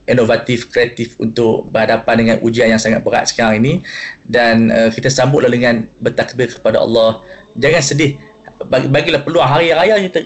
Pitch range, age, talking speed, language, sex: 115-145 Hz, 20-39, 150 wpm, Malay, male